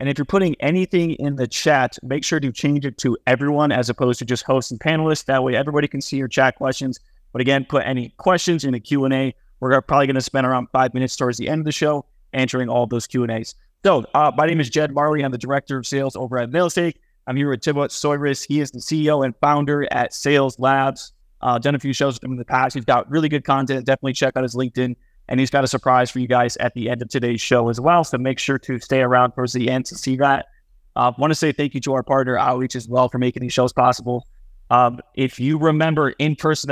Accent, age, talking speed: American, 30-49, 255 wpm